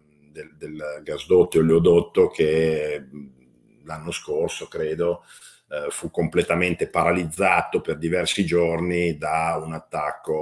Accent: native